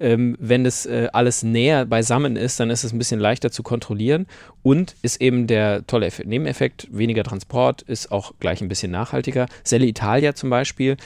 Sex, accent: male, German